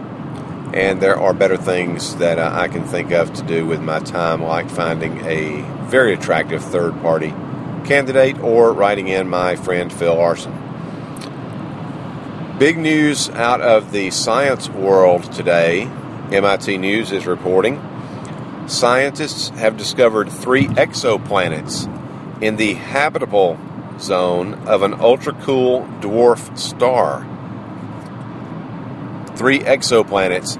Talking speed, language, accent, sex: 110 wpm, English, American, male